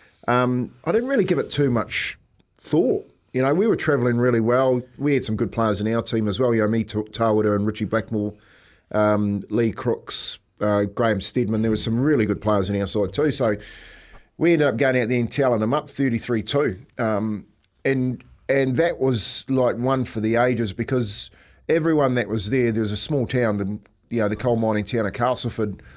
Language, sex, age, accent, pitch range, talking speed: English, male, 40-59, Australian, 110-130 Hz, 205 wpm